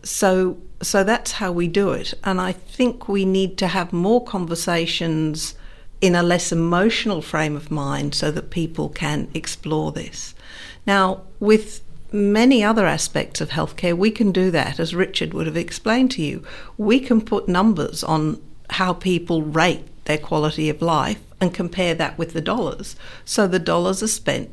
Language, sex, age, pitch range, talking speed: English, female, 60-79, 165-200 Hz, 170 wpm